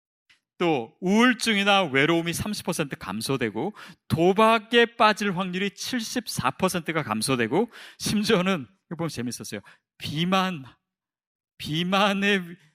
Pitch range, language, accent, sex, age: 165-235 Hz, Korean, native, male, 40-59